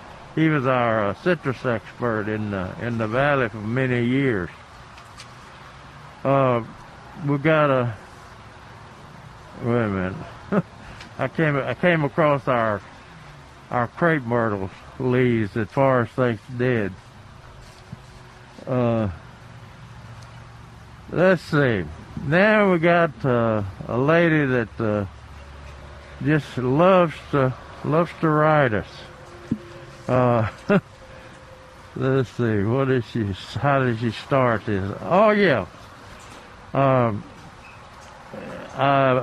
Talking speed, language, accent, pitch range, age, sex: 105 wpm, English, American, 115-145 Hz, 60-79, male